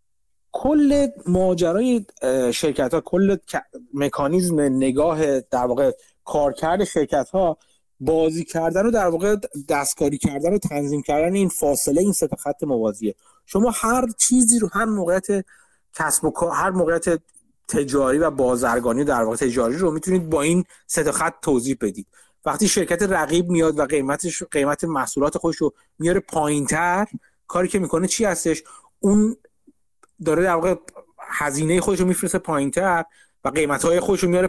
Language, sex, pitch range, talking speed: Persian, male, 145-195 Hz, 135 wpm